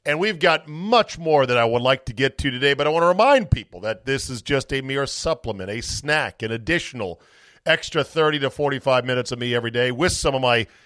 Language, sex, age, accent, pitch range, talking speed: English, male, 40-59, American, 110-140 Hz, 240 wpm